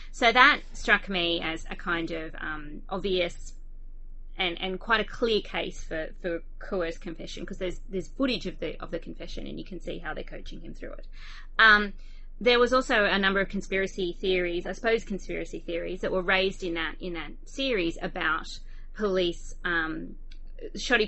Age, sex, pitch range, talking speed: 20-39, female, 170-205 Hz, 180 wpm